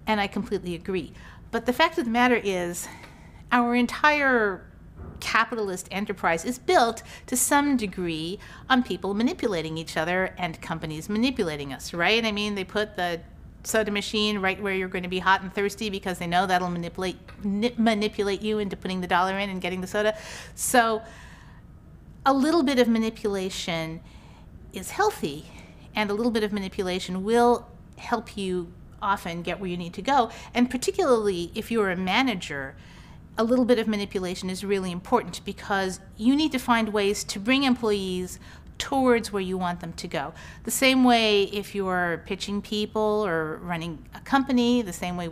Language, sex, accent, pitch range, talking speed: English, female, American, 180-235 Hz, 170 wpm